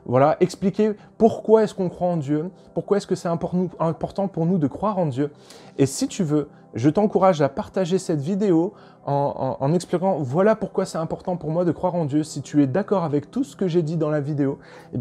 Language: French